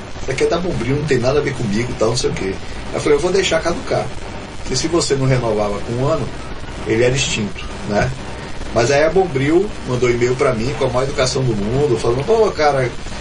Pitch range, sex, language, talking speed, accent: 125-165 Hz, male, Portuguese, 235 wpm, Brazilian